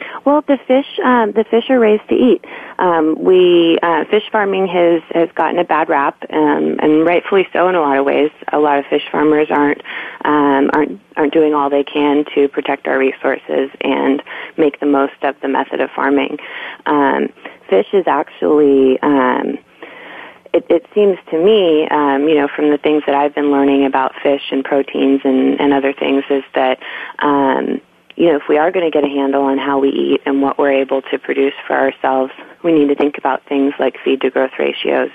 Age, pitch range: 30-49, 135-155 Hz